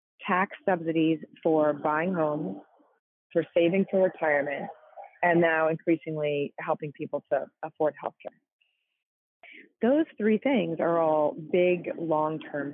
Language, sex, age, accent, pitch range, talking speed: English, female, 30-49, American, 150-195 Hz, 120 wpm